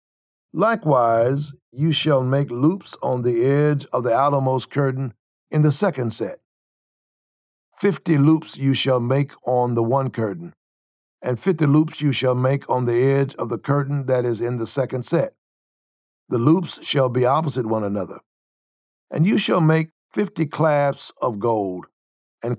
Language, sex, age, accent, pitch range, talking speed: English, male, 60-79, American, 120-150 Hz, 155 wpm